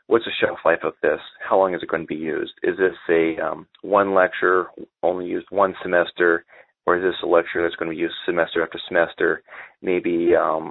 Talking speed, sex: 220 wpm, male